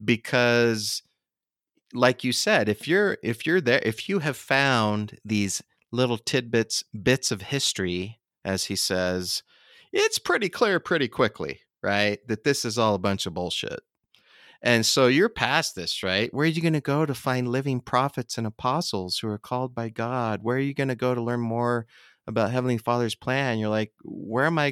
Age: 30-49